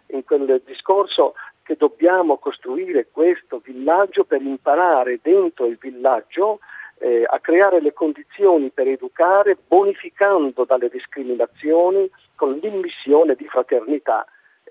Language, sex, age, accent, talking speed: Italian, male, 50-69, native, 105 wpm